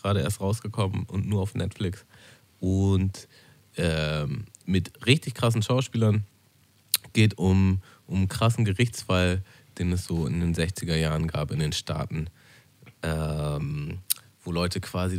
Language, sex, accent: German, male, German